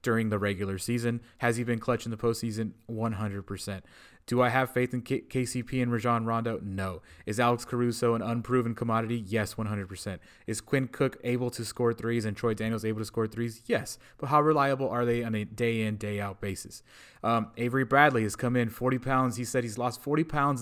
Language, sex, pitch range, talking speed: English, male, 115-140 Hz, 205 wpm